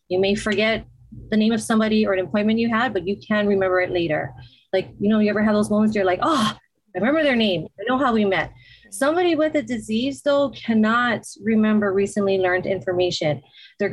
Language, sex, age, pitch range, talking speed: English, female, 30-49, 185-220 Hz, 215 wpm